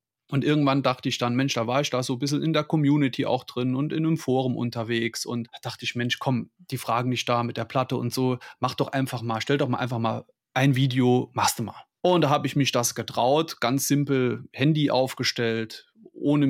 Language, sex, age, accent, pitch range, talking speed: German, male, 30-49, German, 125-160 Hz, 230 wpm